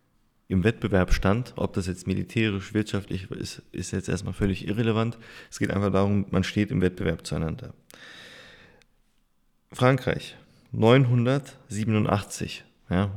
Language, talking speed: English, 115 wpm